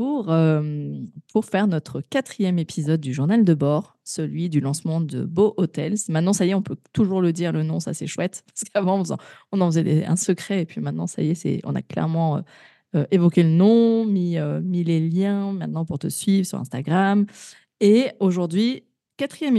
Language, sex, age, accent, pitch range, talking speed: French, female, 20-39, French, 160-205 Hz, 200 wpm